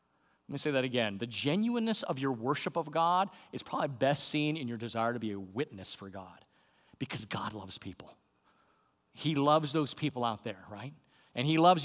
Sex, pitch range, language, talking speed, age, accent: male, 130-190 Hz, English, 200 wpm, 40-59, American